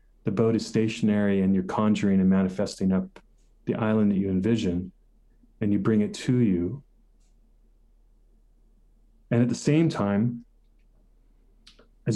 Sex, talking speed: male, 135 wpm